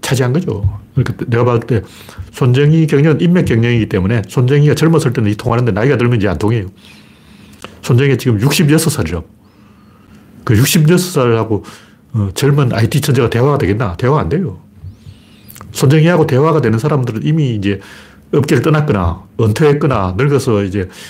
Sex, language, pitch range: male, Korean, 105-150 Hz